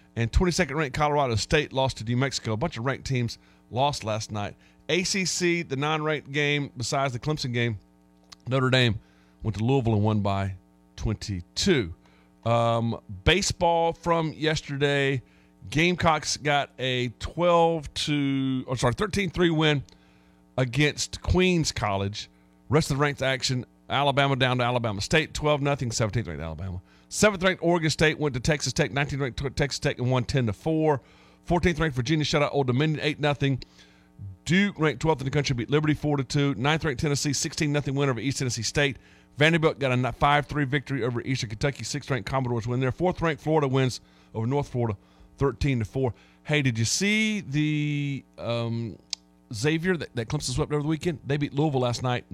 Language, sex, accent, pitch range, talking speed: English, male, American, 110-150 Hz, 160 wpm